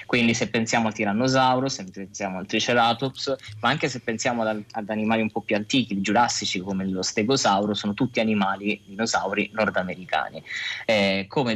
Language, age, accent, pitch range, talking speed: Italian, 20-39, native, 100-115 Hz, 150 wpm